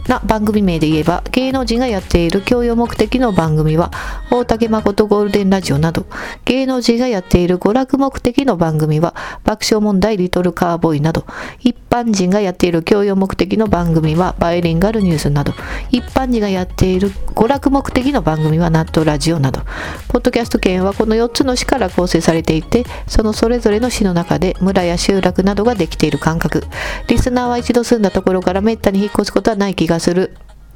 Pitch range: 165-230 Hz